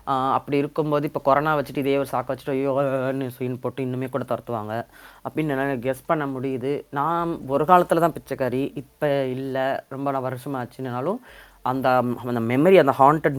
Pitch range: 125-150 Hz